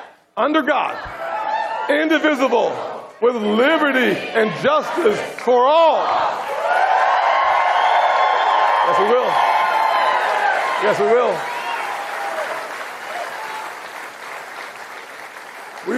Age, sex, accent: 50-69, male, American